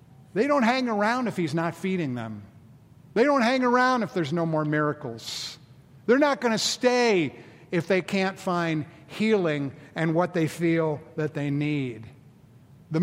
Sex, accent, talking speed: male, American, 165 wpm